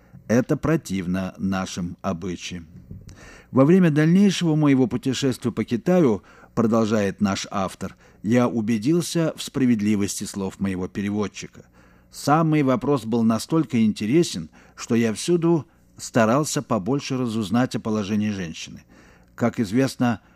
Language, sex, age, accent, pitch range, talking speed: Russian, male, 50-69, native, 100-140 Hz, 110 wpm